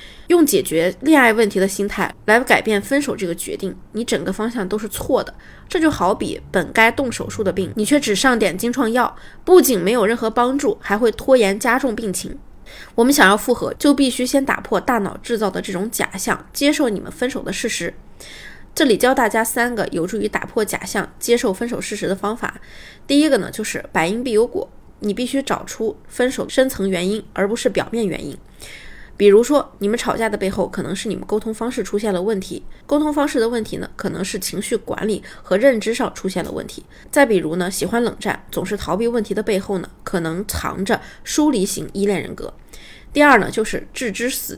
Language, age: Chinese, 20-39